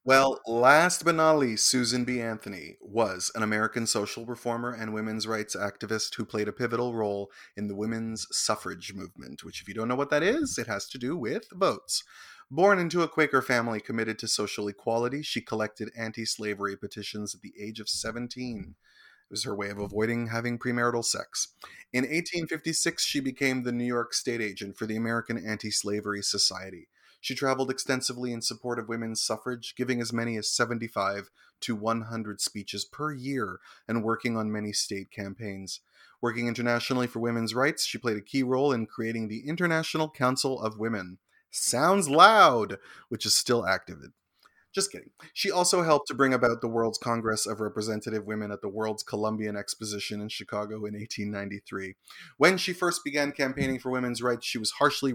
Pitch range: 105-125 Hz